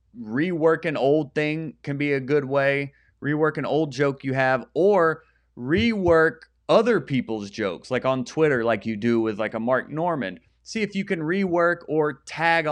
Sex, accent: male, American